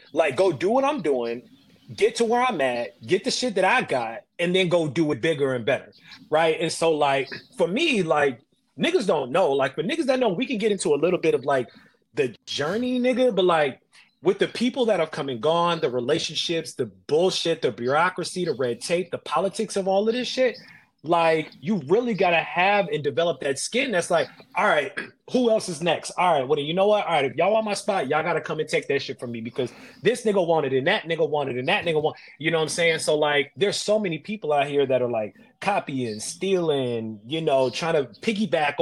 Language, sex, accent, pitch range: English, male, American, 150-225 Hz